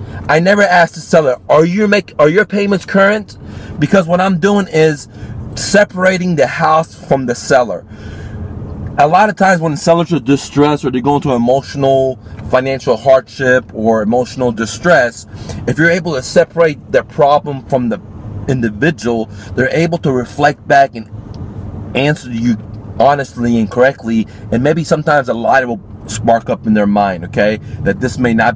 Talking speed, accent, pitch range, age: 160 wpm, American, 105-145 Hz, 30-49